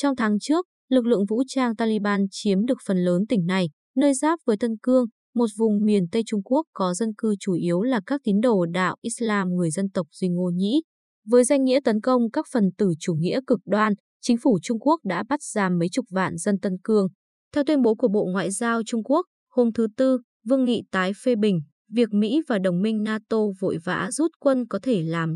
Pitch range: 190-250 Hz